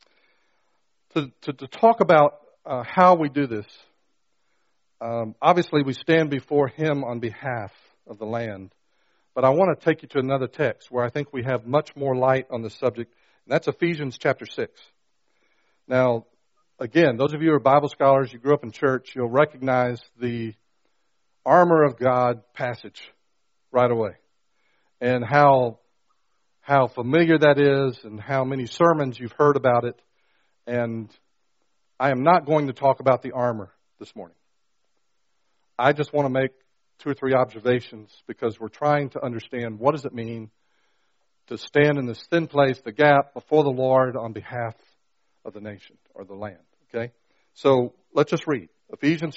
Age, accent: 50-69, American